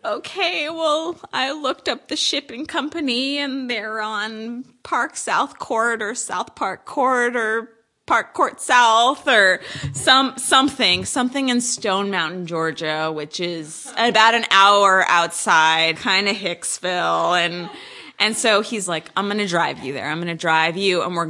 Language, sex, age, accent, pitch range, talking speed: English, female, 20-39, American, 170-225 Hz, 160 wpm